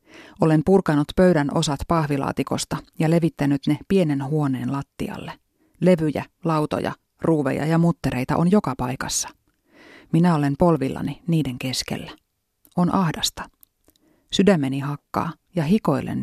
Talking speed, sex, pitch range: 110 wpm, female, 140-170 Hz